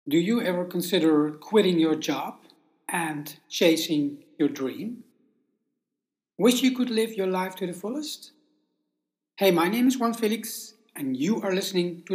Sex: male